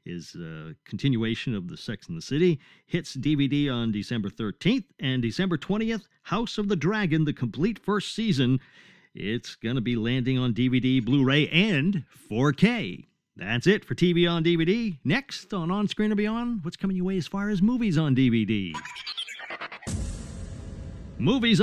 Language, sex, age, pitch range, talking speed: English, male, 50-69, 120-185 Hz, 165 wpm